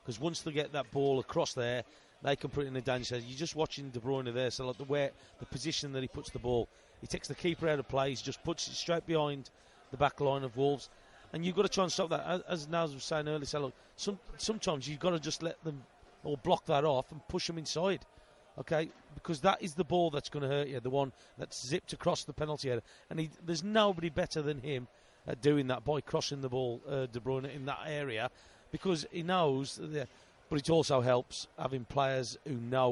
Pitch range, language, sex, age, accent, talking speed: 135-165 Hz, English, male, 30-49, British, 245 wpm